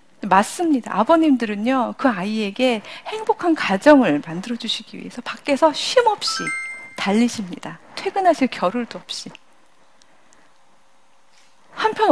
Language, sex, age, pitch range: Korean, female, 40-59, 200-290 Hz